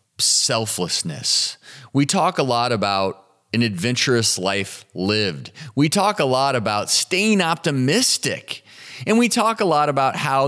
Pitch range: 105-140 Hz